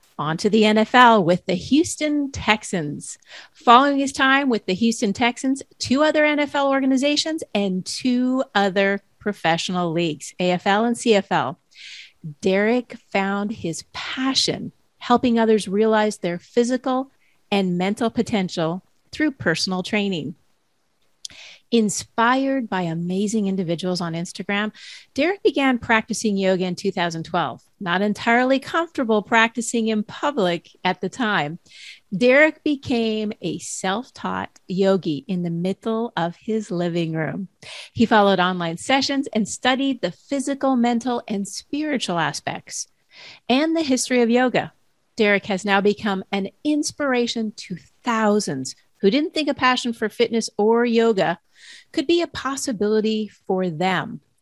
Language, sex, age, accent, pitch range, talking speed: English, female, 30-49, American, 185-255 Hz, 125 wpm